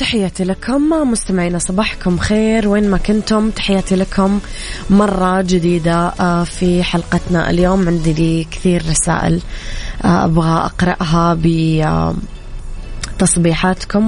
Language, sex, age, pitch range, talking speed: Arabic, female, 20-39, 170-195 Hz, 100 wpm